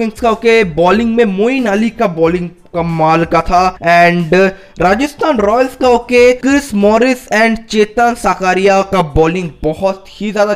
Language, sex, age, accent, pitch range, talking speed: Hindi, male, 20-39, native, 180-225 Hz, 150 wpm